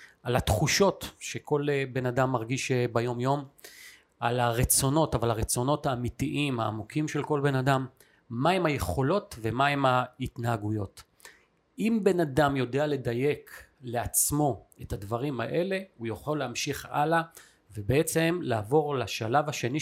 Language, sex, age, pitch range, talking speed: Hebrew, male, 40-59, 125-165 Hz, 120 wpm